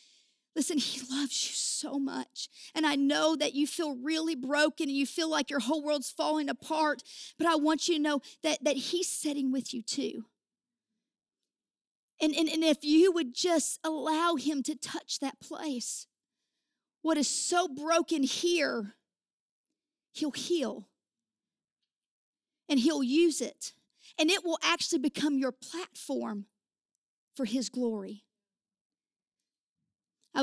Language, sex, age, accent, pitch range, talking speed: English, female, 40-59, American, 250-310 Hz, 140 wpm